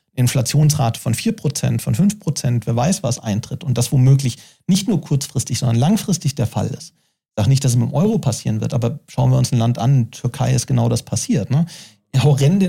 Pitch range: 130-170 Hz